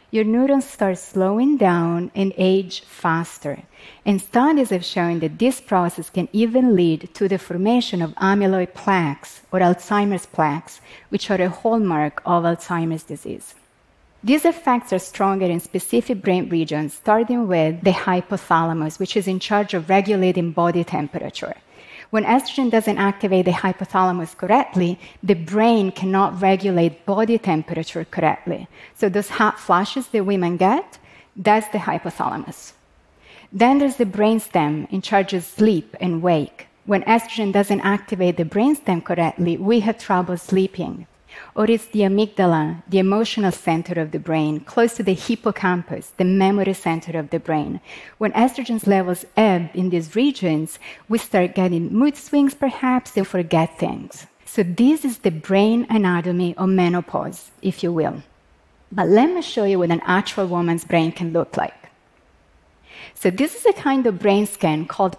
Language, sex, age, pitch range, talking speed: Portuguese, female, 30-49, 175-215 Hz, 155 wpm